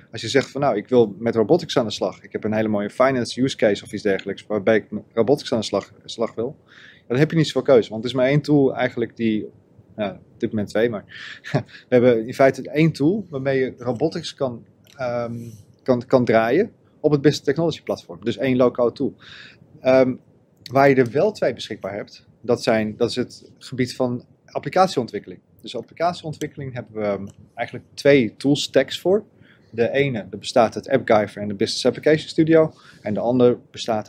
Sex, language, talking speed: male, Dutch, 200 wpm